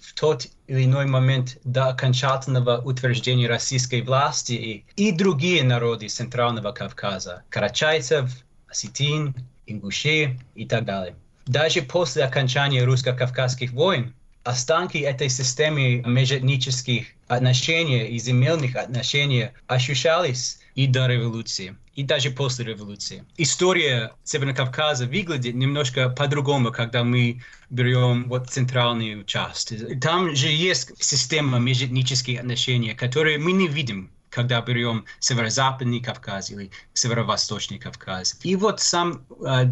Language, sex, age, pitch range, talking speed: Russian, male, 20-39, 120-140 Hz, 115 wpm